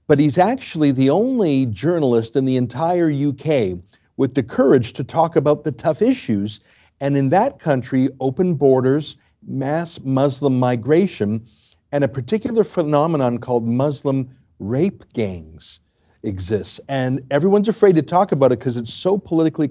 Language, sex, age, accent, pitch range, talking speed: English, male, 50-69, American, 125-170 Hz, 145 wpm